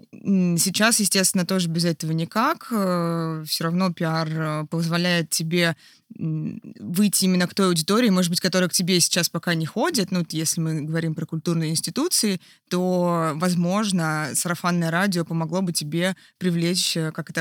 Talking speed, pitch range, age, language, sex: 145 wpm, 165-195 Hz, 20-39, Russian, female